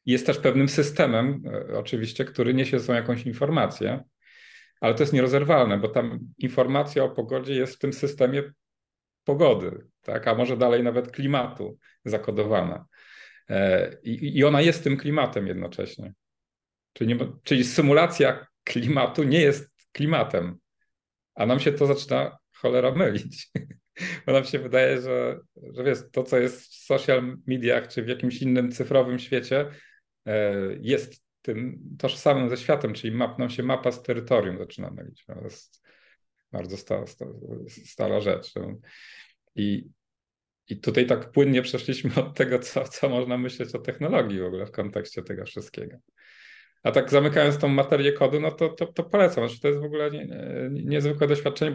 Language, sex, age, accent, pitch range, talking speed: Polish, male, 40-59, native, 120-145 Hz, 150 wpm